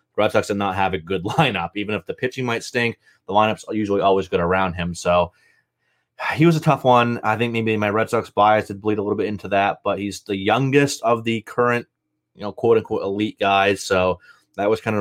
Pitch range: 95-115 Hz